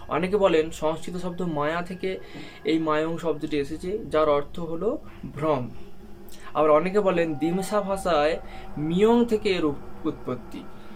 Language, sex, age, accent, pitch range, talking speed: Bengali, male, 20-39, native, 150-185 Hz, 125 wpm